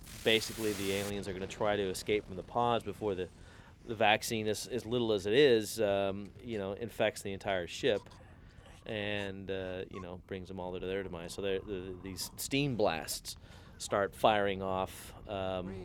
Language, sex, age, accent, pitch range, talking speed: English, male, 30-49, American, 95-110 Hz, 180 wpm